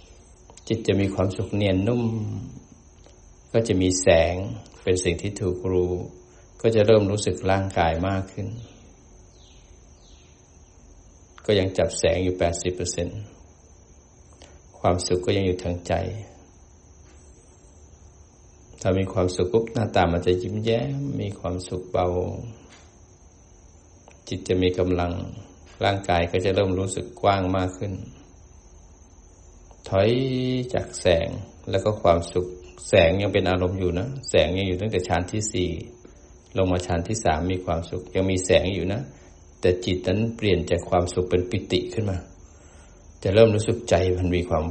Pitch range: 85-100 Hz